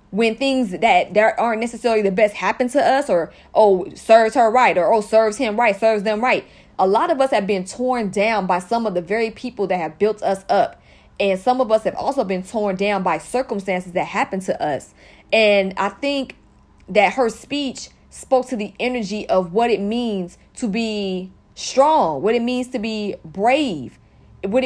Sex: female